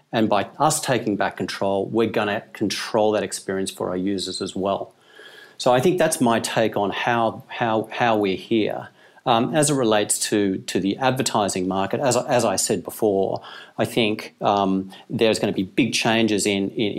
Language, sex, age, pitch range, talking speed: English, male, 40-59, 100-120 Hz, 190 wpm